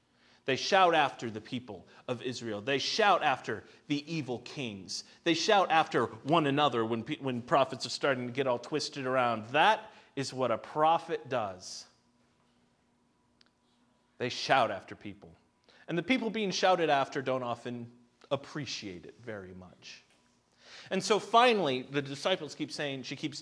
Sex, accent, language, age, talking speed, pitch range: male, American, English, 30-49, 150 wpm, 115-155 Hz